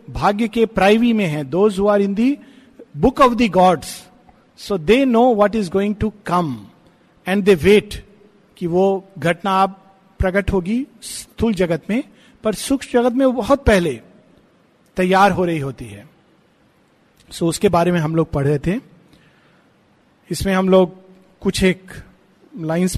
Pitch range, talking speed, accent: 170-220 Hz, 120 wpm, native